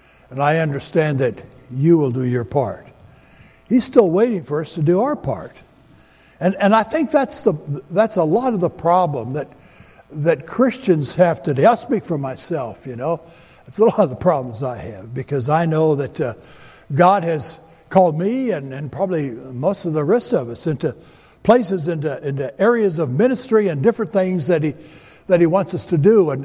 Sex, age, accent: male, 60-79, American